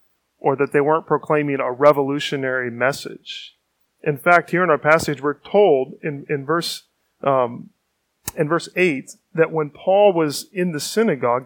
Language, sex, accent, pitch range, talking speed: English, male, American, 135-165 Hz, 155 wpm